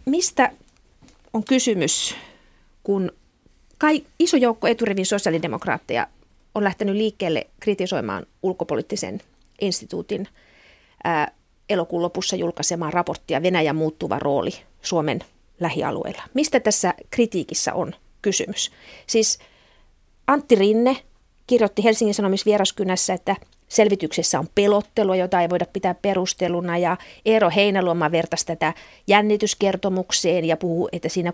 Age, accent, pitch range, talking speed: 40-59, native, 175-220 Hz, 105 wpm